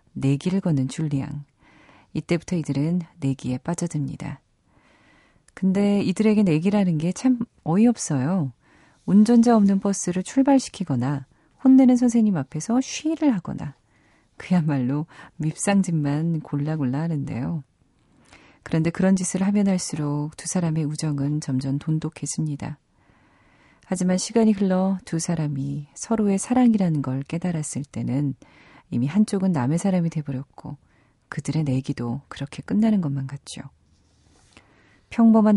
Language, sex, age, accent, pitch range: Korean, female, 40-59, native, 140-190 Hz